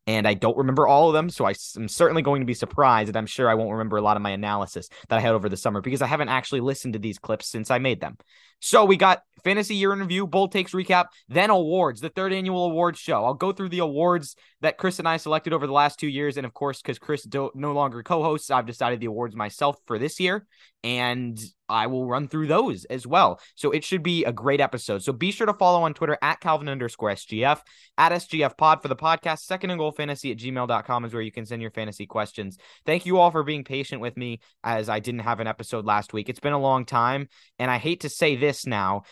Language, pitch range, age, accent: English, 110-150 Hz, 20-39, American